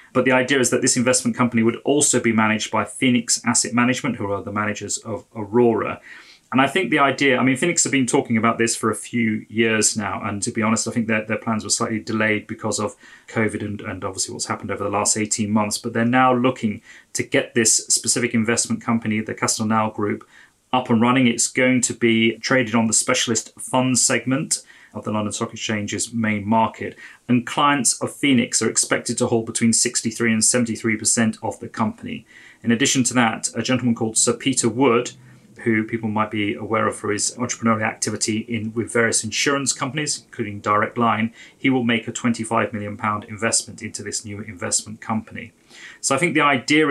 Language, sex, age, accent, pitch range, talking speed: English, male, 30-49, British, 110-125 Hz, 200 wpm